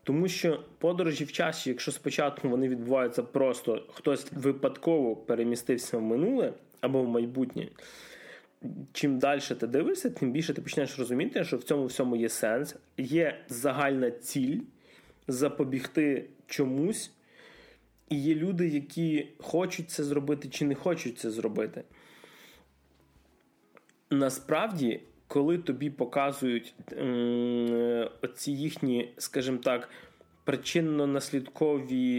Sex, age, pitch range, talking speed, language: male, 20-39, 125-160 Hz, 110 wpm, Russian